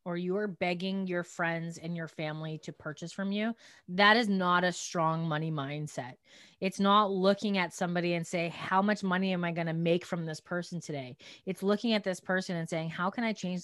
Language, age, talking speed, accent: English, 20-39, 220 wpm, American